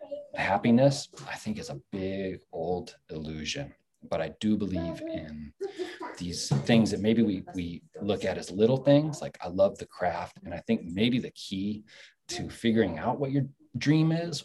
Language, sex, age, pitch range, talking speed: English, male, 30-49, 95-140 Hz, 175 wpm